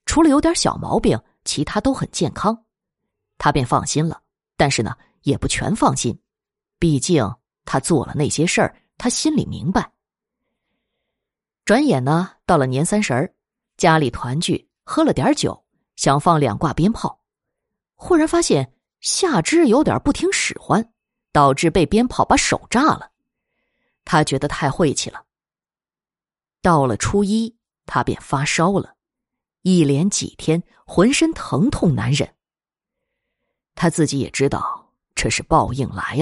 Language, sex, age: Chinese, female, 20-39